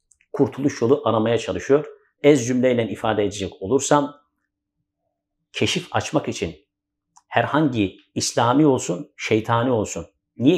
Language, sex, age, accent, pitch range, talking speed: Turkish, male, 50-69, native, 115-165 Hz, 100 wpm